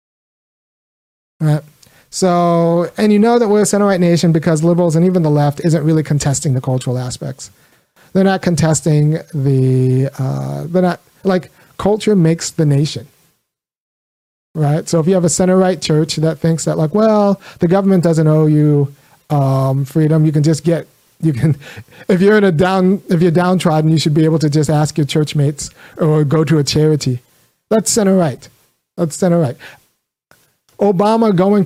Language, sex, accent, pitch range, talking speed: English, male, American, 150-180 Hz, 175 wpm